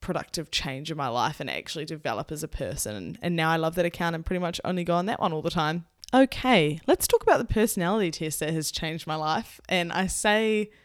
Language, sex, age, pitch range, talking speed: English, female, 10-29, 155-185 Hz, 240 wpm